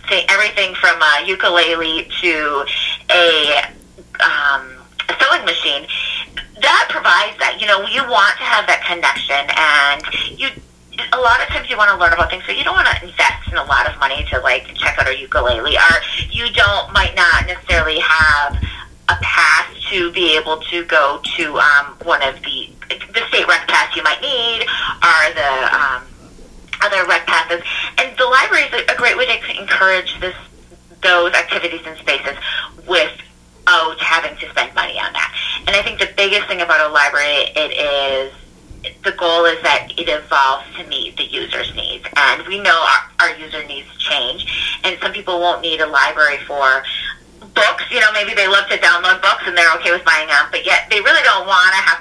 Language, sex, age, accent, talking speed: English, female, 30-49, American, 190 wpm